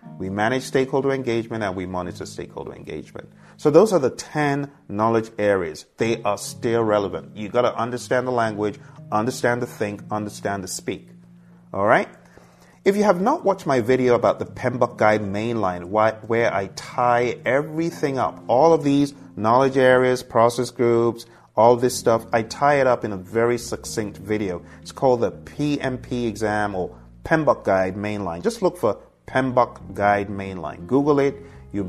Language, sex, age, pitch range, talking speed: English, male, 30-49, 100-130 Hz, 165 wpm